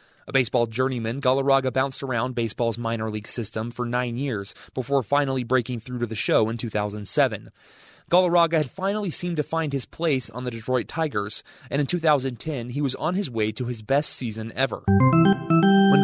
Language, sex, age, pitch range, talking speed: English, male, 20-39, 115-150 Hz, 180 wpm